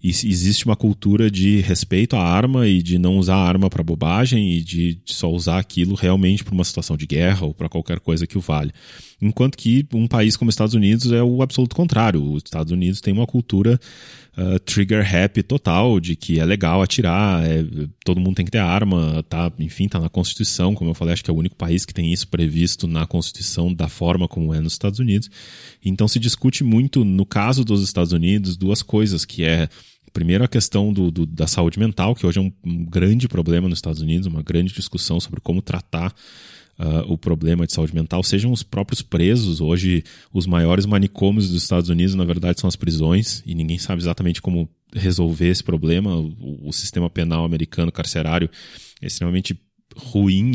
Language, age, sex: Portuguese, 20-39, male